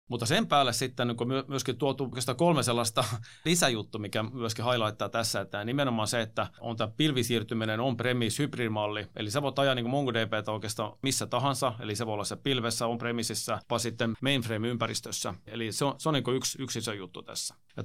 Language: Finnish